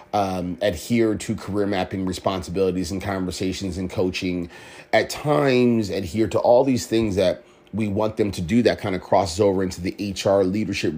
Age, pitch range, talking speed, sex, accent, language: 30-49, 95-115 Hz, 175 wpm, male, American, English